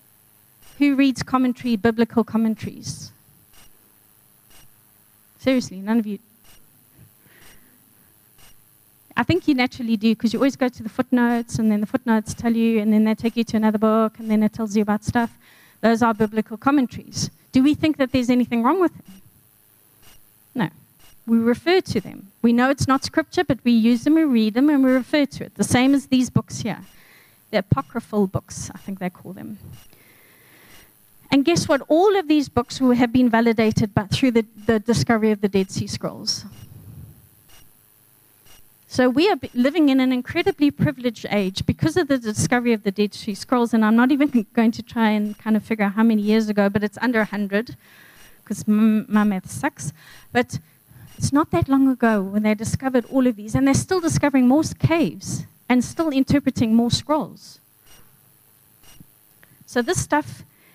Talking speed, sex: 175 wpm, female